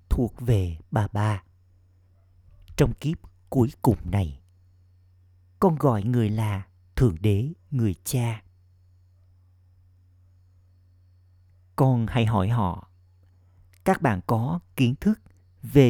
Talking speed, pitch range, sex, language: 100 wpm, 90-120 Hz, male, Vietnamese